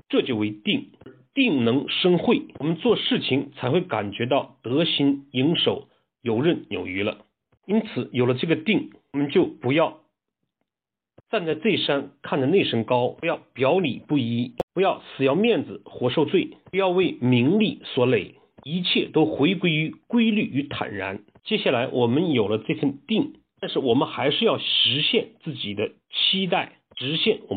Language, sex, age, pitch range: Chinese, male, 50-69, 135-210 Hz